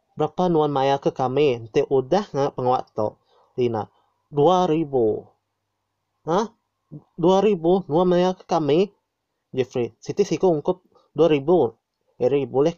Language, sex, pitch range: Malay, male, 120-155 Hz